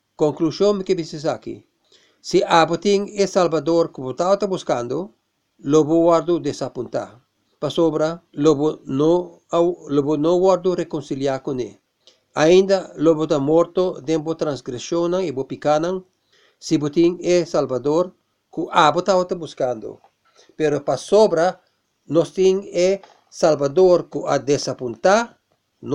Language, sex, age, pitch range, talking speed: English, male, 50-69, 150-180 Hz, 130 wpm